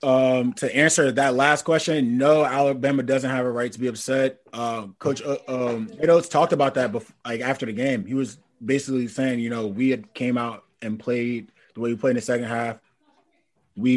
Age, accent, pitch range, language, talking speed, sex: 20-39, American, 120-150 Hz, English, 210 wpm, male